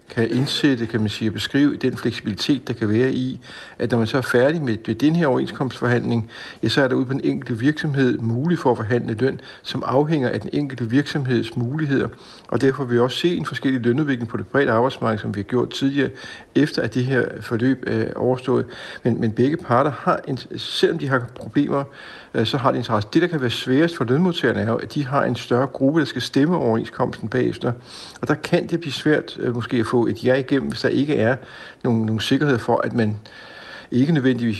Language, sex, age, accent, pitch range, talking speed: Danish, male, 60-79, native, 115-135 Hz, 220 wpm